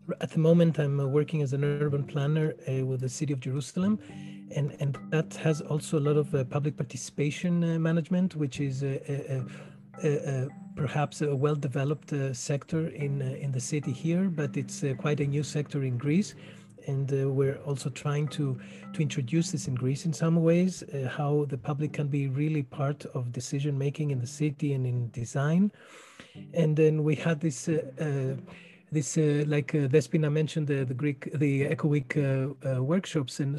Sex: male